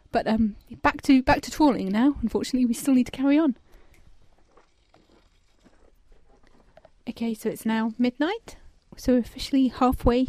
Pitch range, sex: 215-255 Hz, female